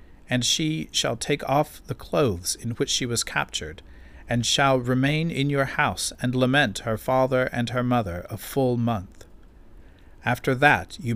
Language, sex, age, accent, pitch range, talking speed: English, male, 40-59, American, 90-135 Hz, 165 wpm